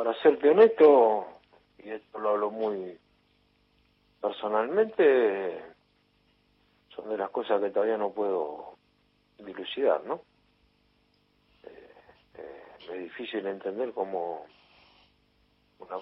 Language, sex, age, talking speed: Spanish, male, 50-69, 95 wpm